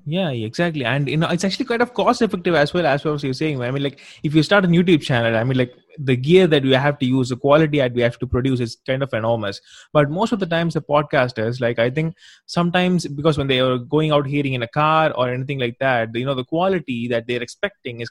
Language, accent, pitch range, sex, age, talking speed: English, Indian, 125-160 Hz, male, 20-39, 270 wpm